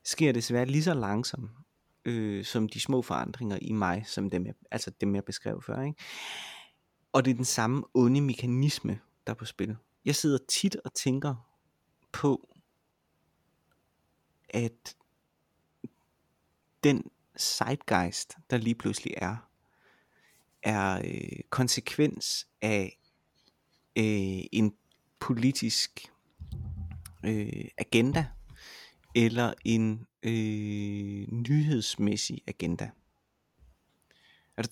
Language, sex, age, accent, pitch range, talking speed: Danish, male, 30-49, native, 105-130 Hz, 90 wpm